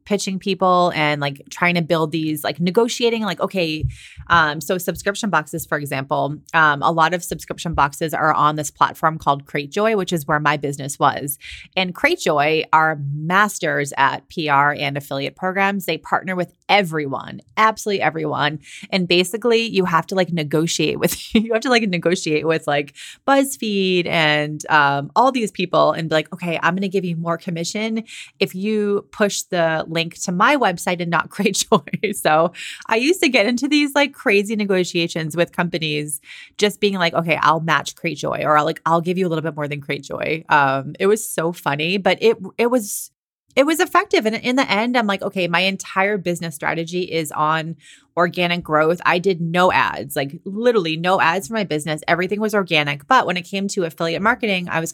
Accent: American